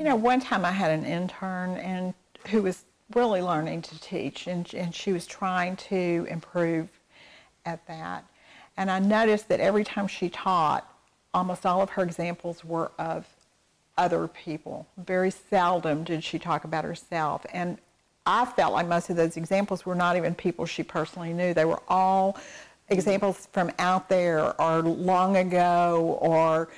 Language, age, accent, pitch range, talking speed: English, 50-69, American, 170-195 Hz, 165 wpm